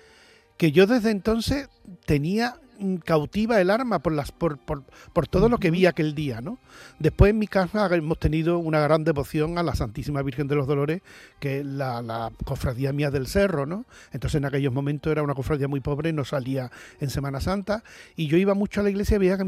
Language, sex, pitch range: Spanish, male, 140-185 Hz